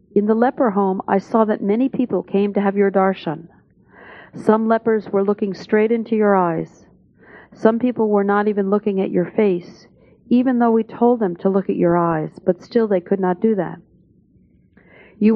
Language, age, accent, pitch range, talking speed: English, 50-69, American, 185-220 Hz, 190 wpm